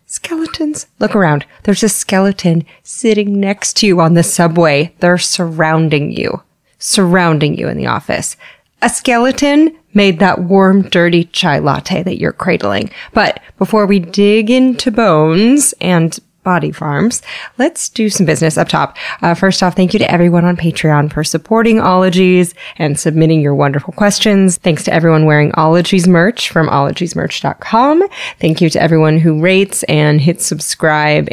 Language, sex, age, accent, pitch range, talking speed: English, female, 30-49, American, 160-205 Hz, 155 wpm